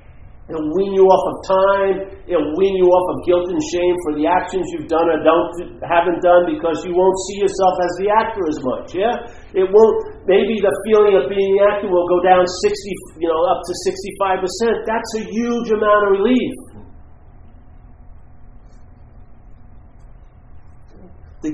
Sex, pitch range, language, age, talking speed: male, 175-230 Hz, English, 50-69, 165 wpm